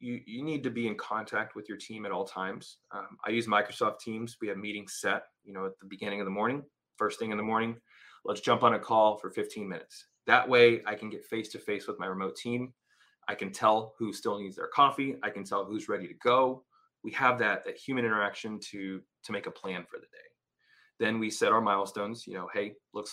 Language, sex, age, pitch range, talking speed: English, male, 20-39, 105-130 Hz, 240 wpm